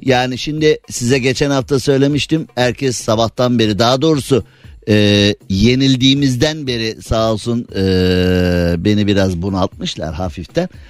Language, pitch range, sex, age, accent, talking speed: Turkish, 110-155 Hz, male, 50-69, native, 115 wpm